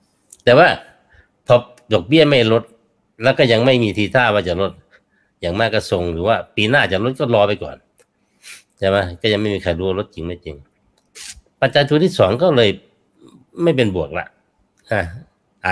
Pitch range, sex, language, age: 95-125 Hz, male, Thai, 60-79